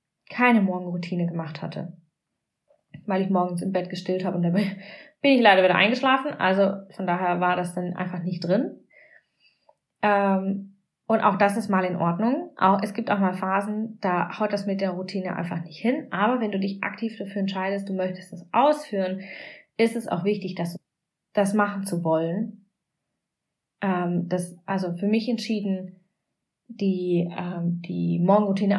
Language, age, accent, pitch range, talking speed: German, 20-39, German, 180-225 Hz, 160 wpm